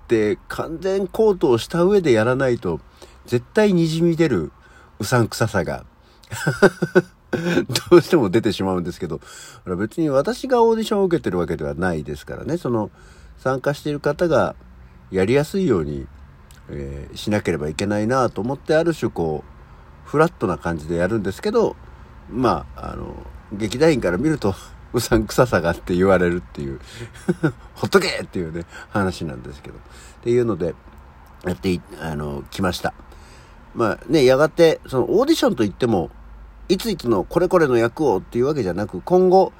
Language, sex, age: Japanese, male, 50-69